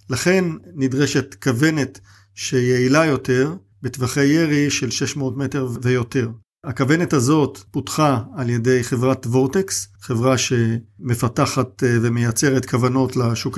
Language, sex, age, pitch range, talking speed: Hebrew, male, 50-69, 125-155 Hz, 100 wpm